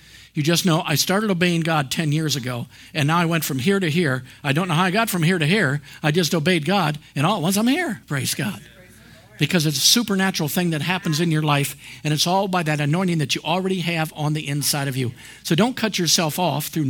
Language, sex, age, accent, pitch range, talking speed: English, male, 50-69, American, 150-185 Hz, 250 wpm